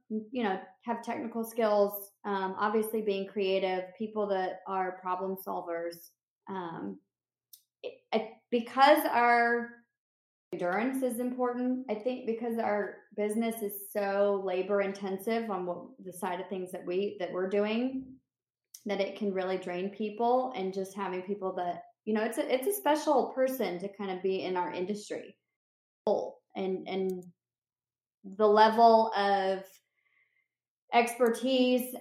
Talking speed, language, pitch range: 140 wpm, English, 185-230 Hz